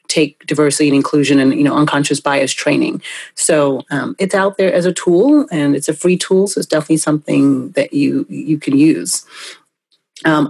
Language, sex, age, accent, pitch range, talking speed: English, female, 30-49, American, 150-210 Hz, 190 wpm